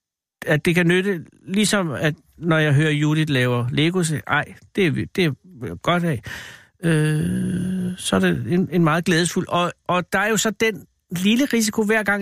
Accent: native